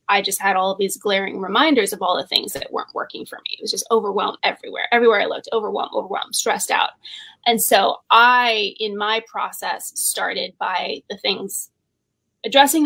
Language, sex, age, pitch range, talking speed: English, female, 20-39, 205-260 Hz, 185 wpm